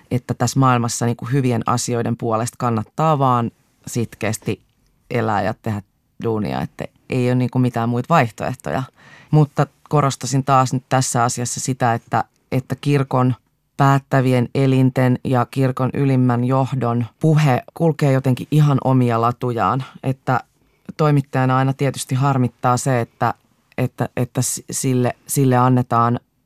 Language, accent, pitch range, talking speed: Finnish, native, 120-135 Hz, 130 wpm